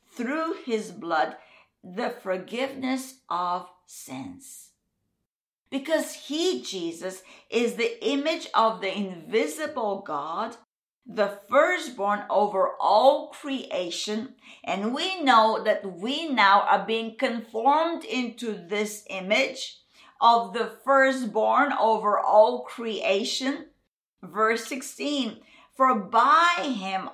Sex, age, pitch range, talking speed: female, 50-69, 205-275 Hz, 100 wpm